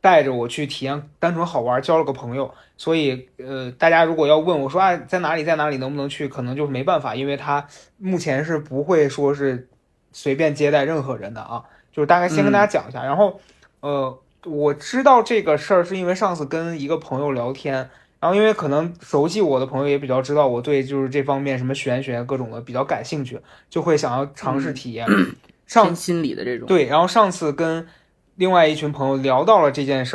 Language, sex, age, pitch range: Chinese, male, 20-39, 135-165 Hz